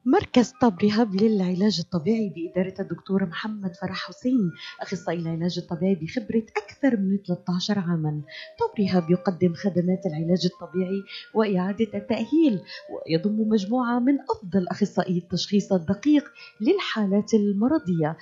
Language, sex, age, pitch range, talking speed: Arabic, female, 30-49, 180-255 Hz, 110 wpm